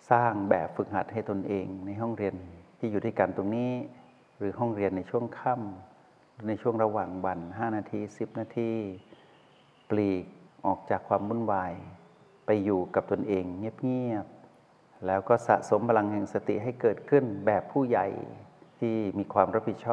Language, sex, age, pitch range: Thai, male, 60-79, 95-115 Hz